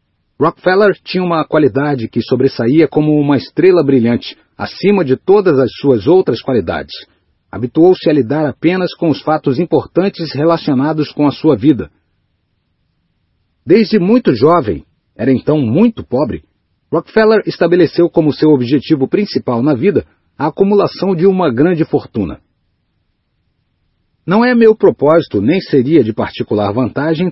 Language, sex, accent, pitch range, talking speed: Portuguese, male, Brazilian, 135-180 Hz, 130 wpm